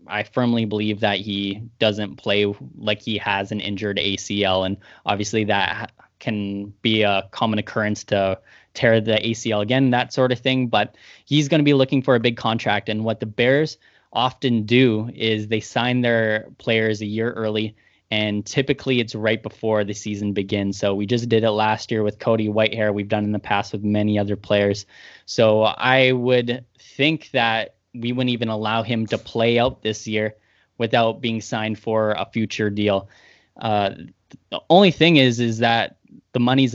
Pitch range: 105-120 Hz